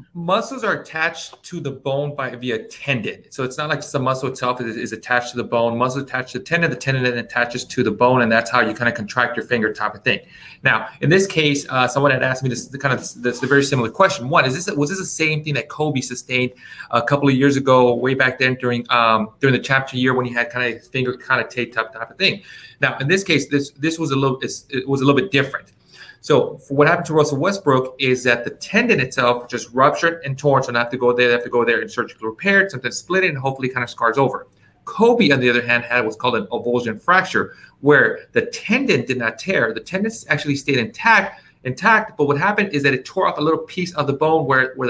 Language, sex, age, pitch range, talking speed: English, male, 30-49, 125-155 Hz, 260 wpm